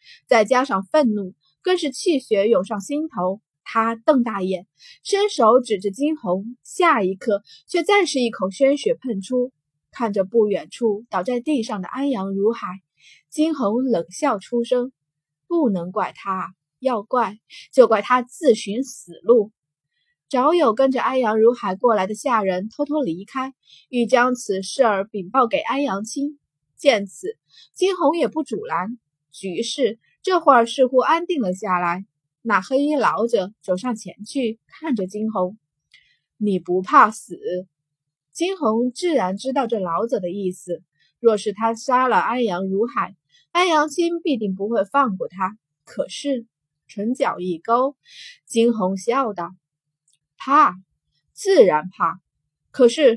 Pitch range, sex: 185-265 Hz, female